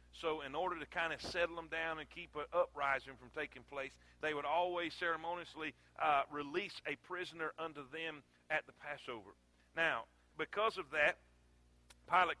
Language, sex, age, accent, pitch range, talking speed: English, male, 40-59, American, 135-190 Hz, 165 wpm